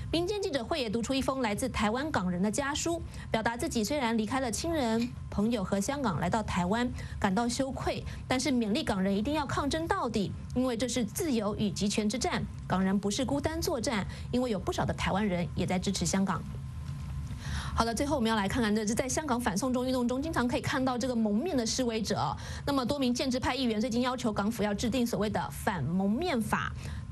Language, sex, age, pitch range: English, female, 30-49, 205-265 Hz